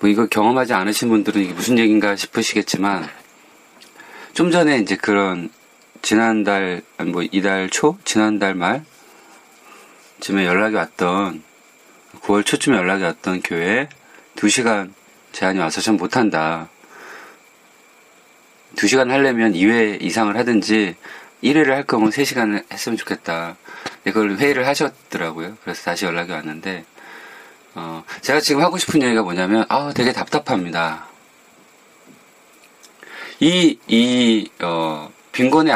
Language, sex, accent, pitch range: Korean, male, native, 95-120 Hz